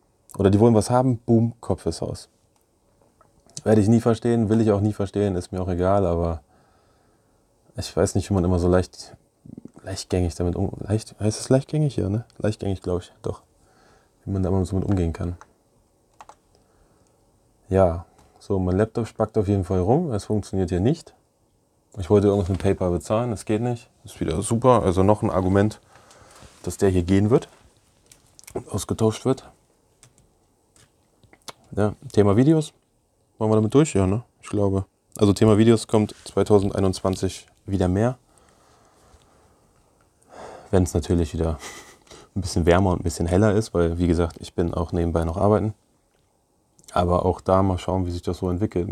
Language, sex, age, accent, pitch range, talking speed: German, male, 20-39, German, 90-110 Hz, 170 wpm